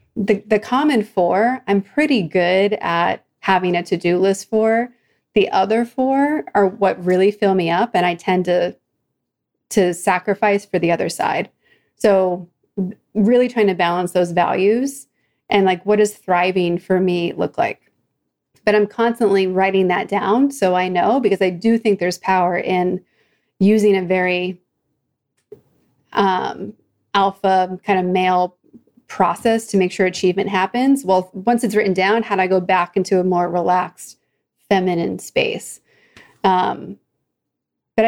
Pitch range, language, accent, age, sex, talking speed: 180-215 Hz, English, American, 30-49, female, 150 wpm